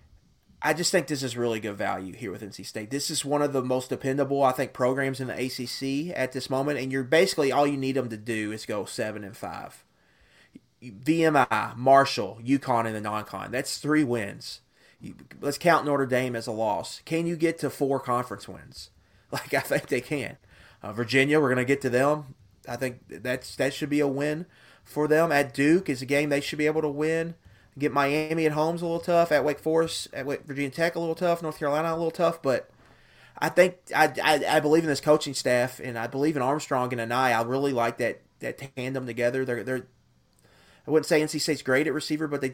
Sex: male